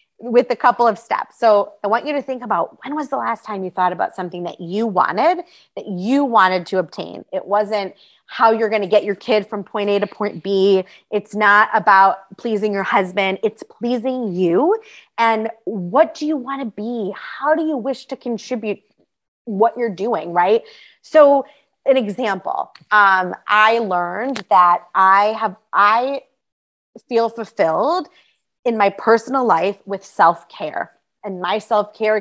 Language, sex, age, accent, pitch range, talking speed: English, female, 30-49, American, 195-235 Hz, 170 wpm